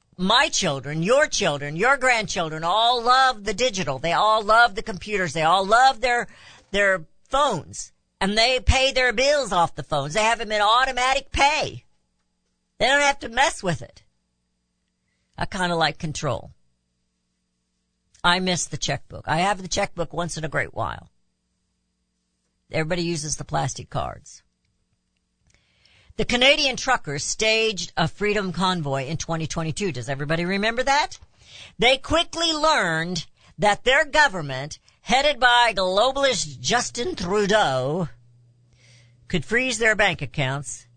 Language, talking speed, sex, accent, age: English, 140 wpm, female, American, 60-79